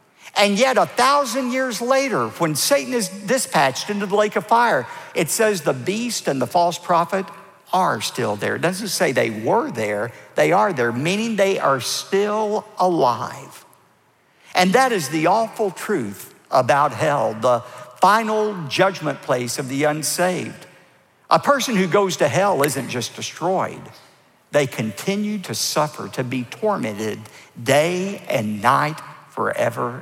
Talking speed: 150 wpm